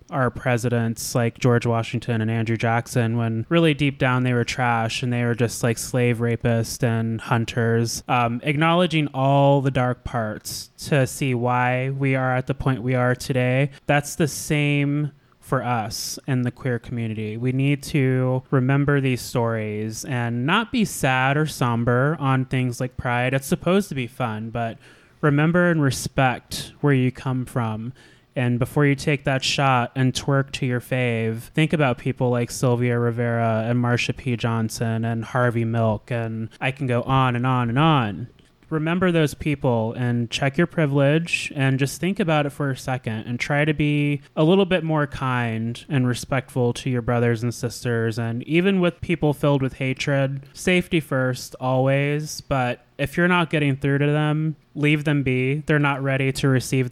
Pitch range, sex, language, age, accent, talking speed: 120-145 Hz, male, English, 20-39, American, 180 wpm